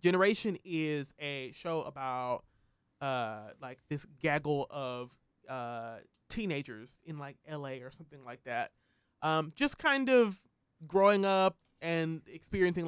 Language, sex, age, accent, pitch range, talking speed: English, male, 20-39, American, 145-185 Hz, 125 wpm